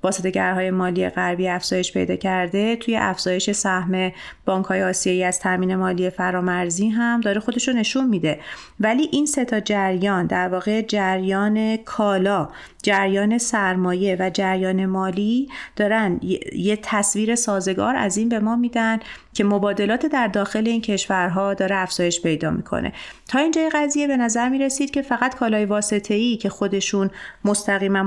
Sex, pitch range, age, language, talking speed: female, 185-225 Hz, 30-49, Persian, 145 wpm